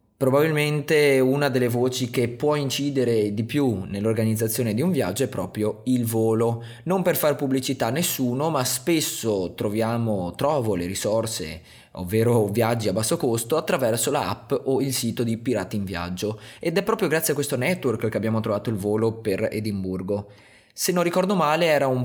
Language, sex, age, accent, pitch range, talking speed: Italian, male, 20-39, native, 105-135 Hz, 175 wpm